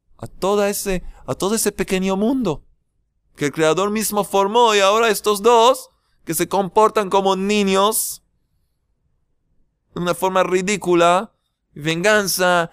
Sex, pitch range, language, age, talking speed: male, 130-200 Hz, Spanish, 30-49, 125 wpm